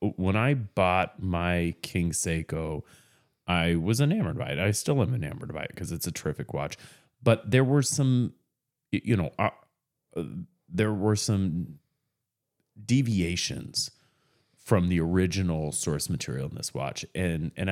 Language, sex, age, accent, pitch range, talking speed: English, male, 30-49, American, 85-125 Hz, 150 wpm